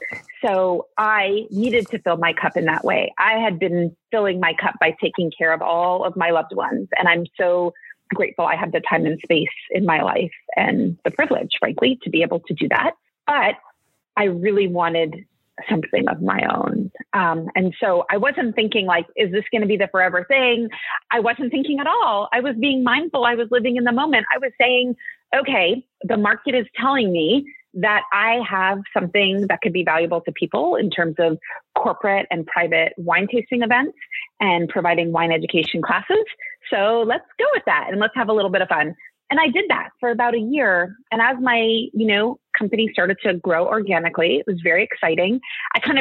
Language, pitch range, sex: English, 180-245 Hz, female